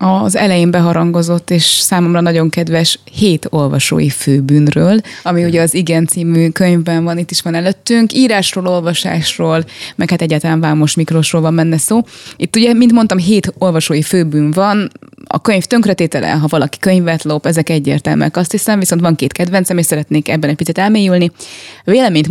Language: Hungarian